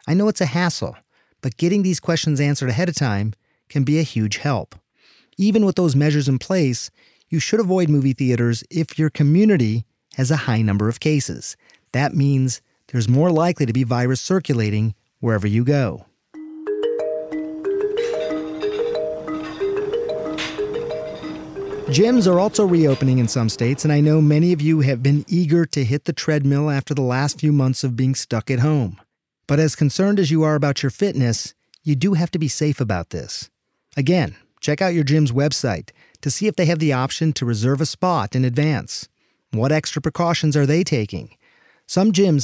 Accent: American